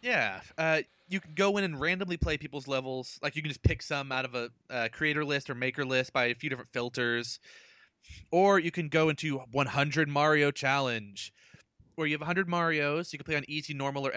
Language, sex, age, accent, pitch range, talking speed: English, male, 20-39, American, 135-170 Hz, 215 wpm